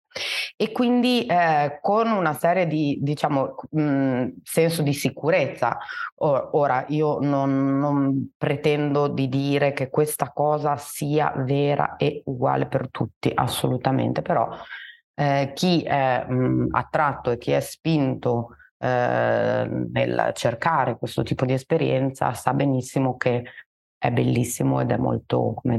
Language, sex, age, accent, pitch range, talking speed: Italian, female, 30-49, native, 125-155 Hz, 125 wpm